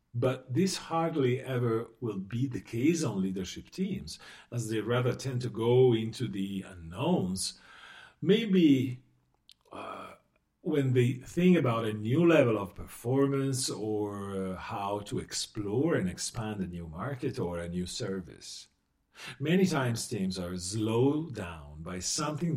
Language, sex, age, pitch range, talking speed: Italian, male, 50-69, 95-140 Hz, 140 wpm